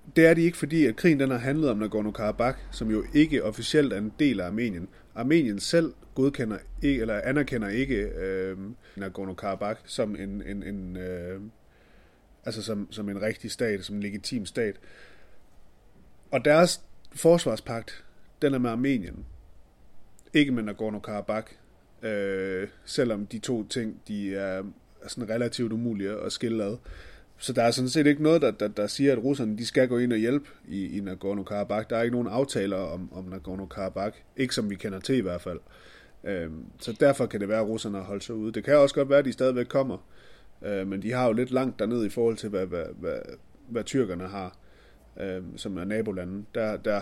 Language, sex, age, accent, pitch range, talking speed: Danish, male, 30-49, native, 100-125 Hz, 190 wpm